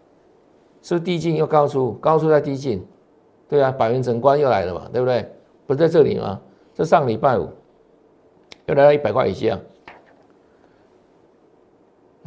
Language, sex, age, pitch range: Chinese, male, 60-79, 145-210 Hz